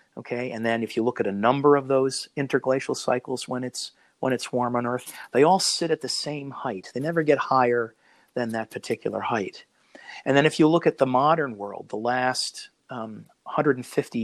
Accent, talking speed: American, 200 wpm